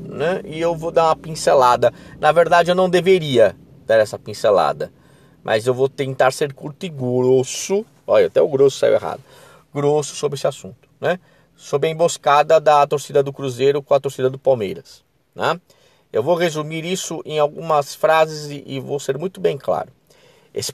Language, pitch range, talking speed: Portuguese, 125-170 Hz, 175 wpm